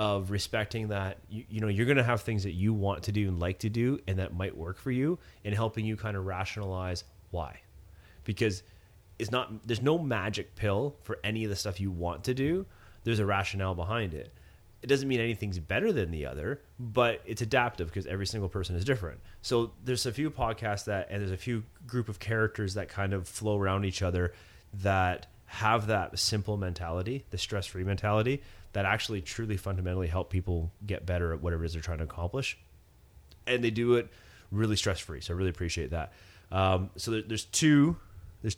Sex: male